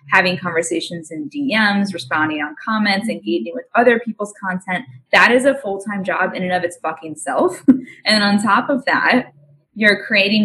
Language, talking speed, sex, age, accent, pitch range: English, 165 wpm, female, 10-29, American, 175-220 Hz